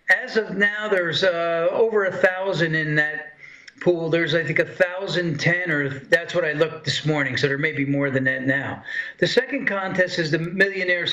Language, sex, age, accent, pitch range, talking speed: English, male, 50-69, American, 150-185 Hz, 205 wpm